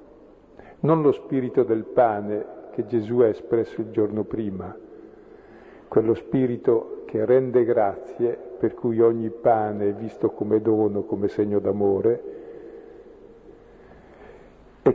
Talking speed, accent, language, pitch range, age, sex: 115 wpm, native, Italian, 110-155 Hz, 50-69, male